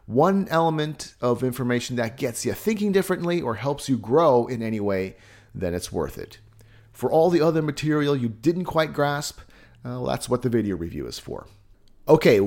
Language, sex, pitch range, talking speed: English, male, 110-155 Hz, 190 wpm